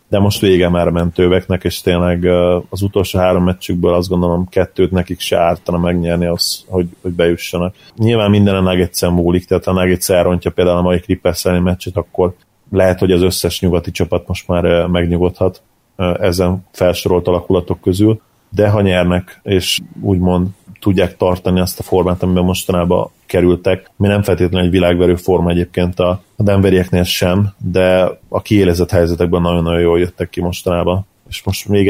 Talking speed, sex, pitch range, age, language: 155 wpm, male, 90-95 Hz, 30-49, Hungarian